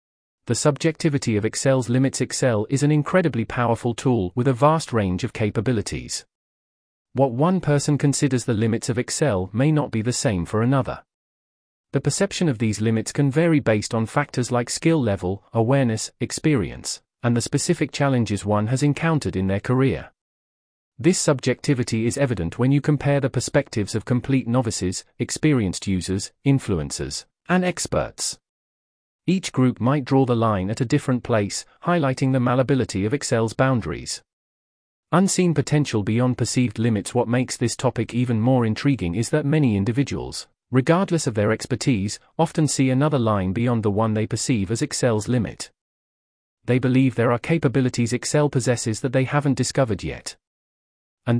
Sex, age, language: male, 40-59, English